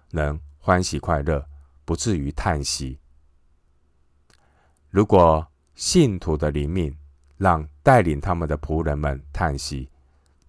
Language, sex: Chinese, male